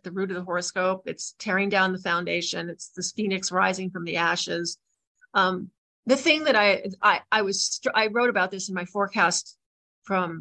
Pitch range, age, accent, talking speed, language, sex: 185-225 Hz, 40-59, American, 190 wpm, English, female